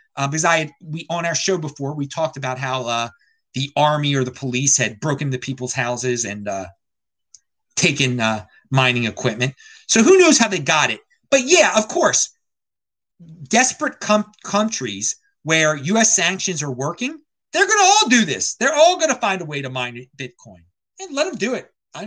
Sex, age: male, 30-49